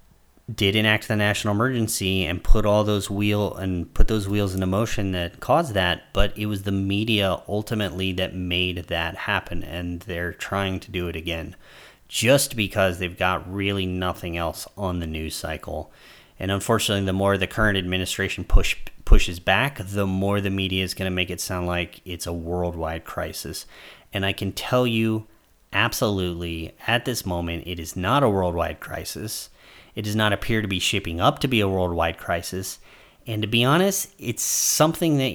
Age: 30-49